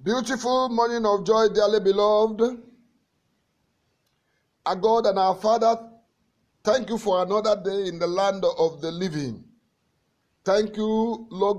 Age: 50-69